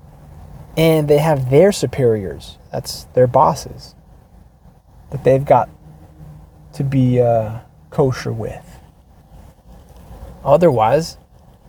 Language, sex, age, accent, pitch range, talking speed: English, male, 30-49, American, 115-155 Hz, 85 wpm